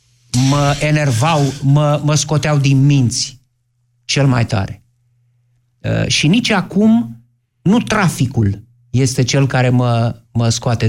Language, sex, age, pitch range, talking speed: Romanian, male, 50-69, 120-160 Hz, 120 wpm